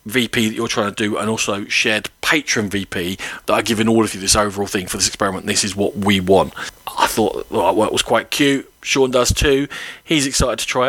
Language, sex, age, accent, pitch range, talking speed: English, male, 40-59, British, 105-135 Hz, 230 wpm